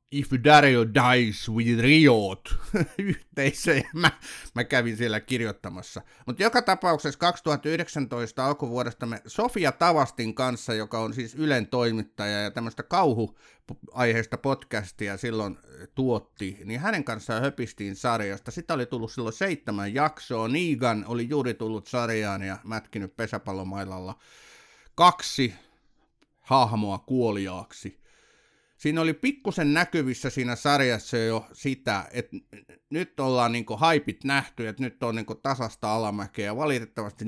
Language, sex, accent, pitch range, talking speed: Finnish, male, native, 110-145 Hz, 120 wpm